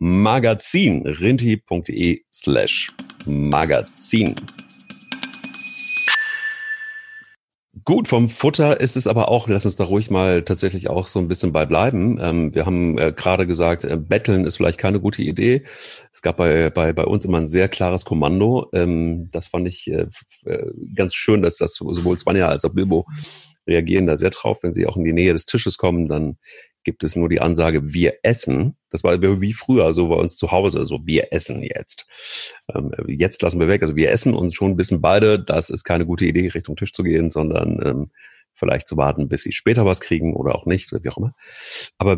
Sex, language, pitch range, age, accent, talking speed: male, German, 85-105 Hz, 40-59, German, 190 wpm